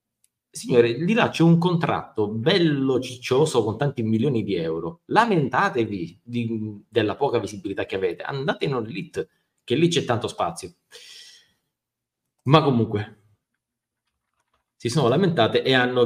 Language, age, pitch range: Italian, 30-49, 105-130 Hz